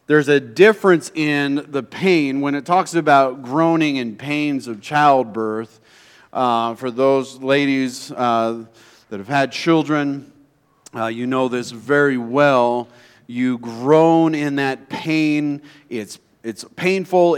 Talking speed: 130 wpm